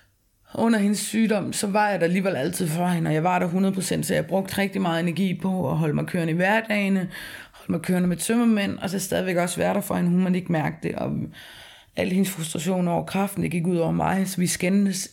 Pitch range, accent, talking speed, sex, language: 155-200 Hz, native, 245 wpm, female, Danish